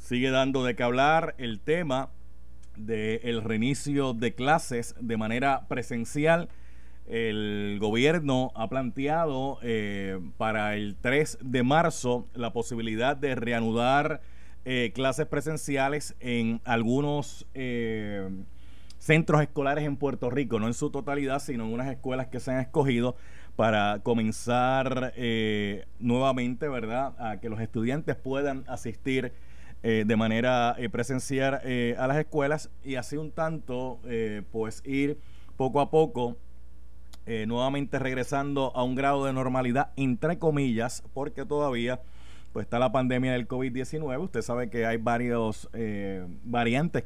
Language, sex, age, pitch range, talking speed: Spanish, male, 30-49, 115-135 Hz, 135 wpm